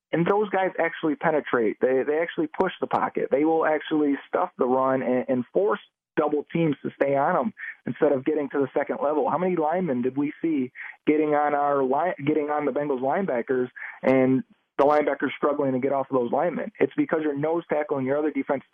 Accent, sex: American, male